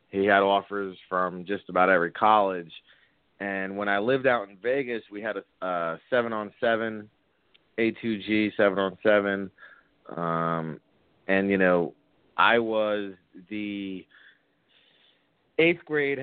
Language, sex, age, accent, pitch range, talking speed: English, male, 30-49, American, 100-115 Hz, 120 wpm